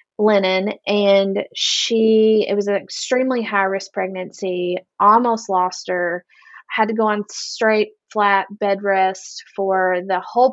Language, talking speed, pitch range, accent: English, 135 wpm, 185-225 Hz, American